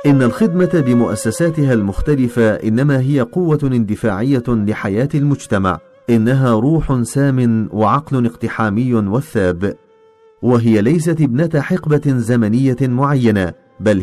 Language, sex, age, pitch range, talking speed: Arabic, male, 40-59, 110-140 Hz, 100 wpm